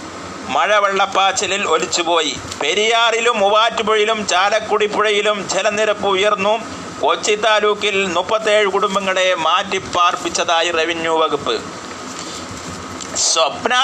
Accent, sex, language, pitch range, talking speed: native, male, Malayalam, 185-215 Hz, 80 wpm